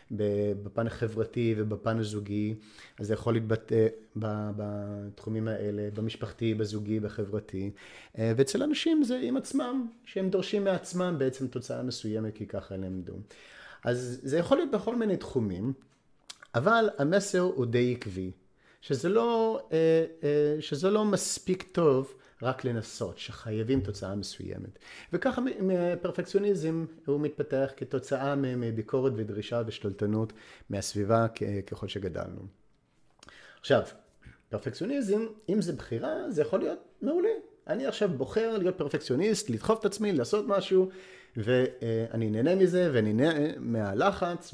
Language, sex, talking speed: Hebrew, male, 115 wpm